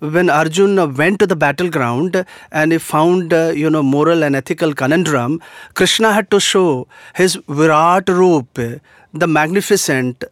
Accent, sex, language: Indian, male, English